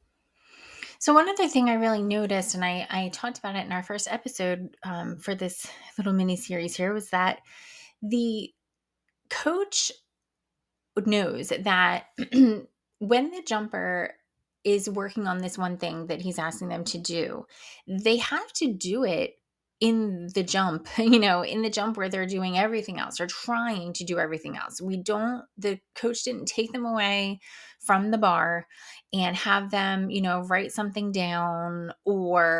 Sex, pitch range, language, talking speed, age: female, 180-235 Hz, English, 165 wpm, 20-39